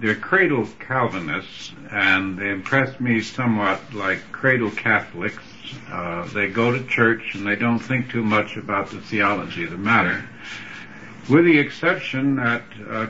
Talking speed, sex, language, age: 150 wpm, male, English, 60-79